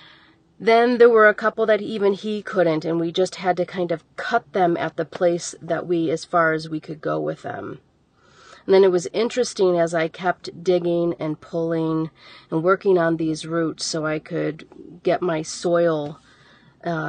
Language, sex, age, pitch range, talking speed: English, female, 40-59, 160-190 Hz, 190 wpm